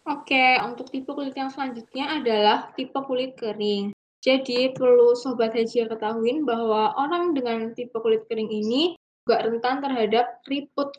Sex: female